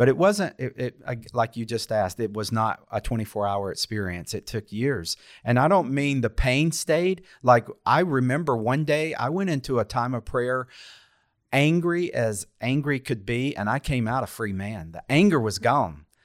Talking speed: 190 wpm